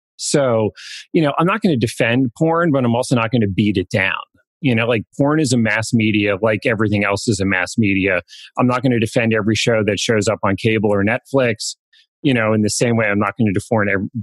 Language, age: English, 30-49